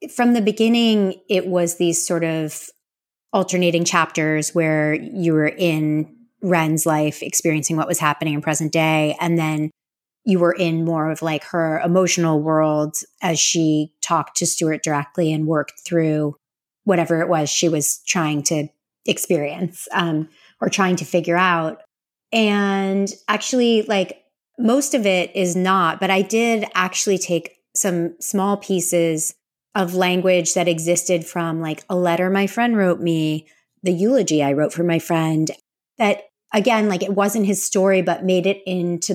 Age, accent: 30-49, American